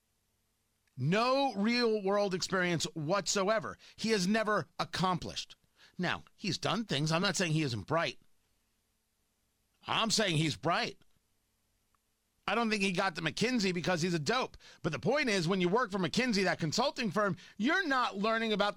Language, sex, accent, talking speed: English, male, American, 155 wpm